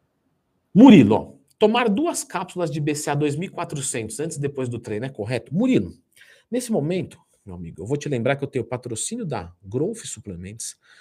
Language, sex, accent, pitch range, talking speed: Portuguese, male, Brazilian, 130-200 Hz, 170 wpm